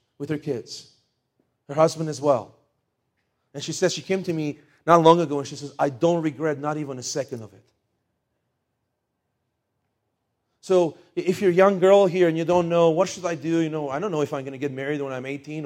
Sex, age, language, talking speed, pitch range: male, 40-59, English, 220 wpm, 140-170 Hz